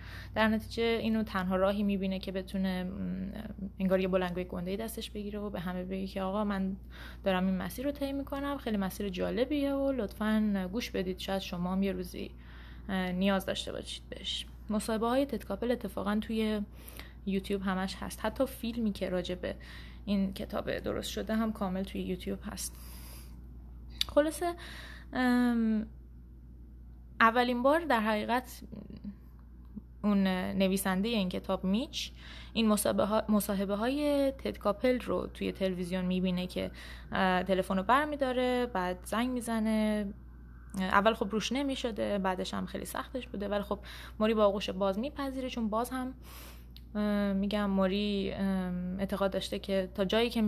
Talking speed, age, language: 135 wpm, 20-39, Persian